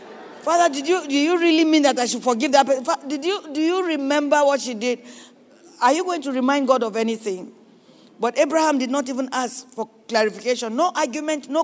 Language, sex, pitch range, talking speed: English, female, 245-315 Hz, 200 wpm